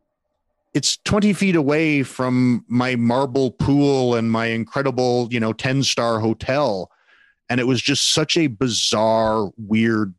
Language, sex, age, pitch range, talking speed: English, male, 40-59, 115-150 Hz, 135 wpm